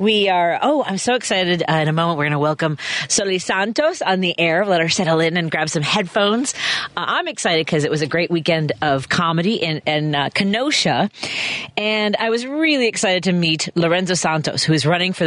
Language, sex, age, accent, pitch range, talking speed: English, female, 40-59, American, 150-195 Hz, 210 wpm